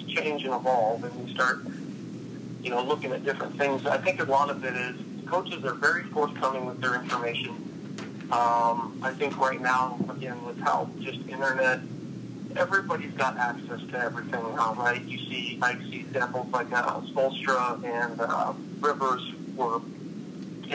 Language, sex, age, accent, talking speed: English, male, 40-59, American, 160 wpm